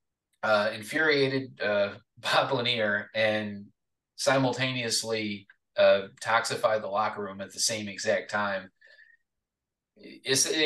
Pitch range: 105-130 Hz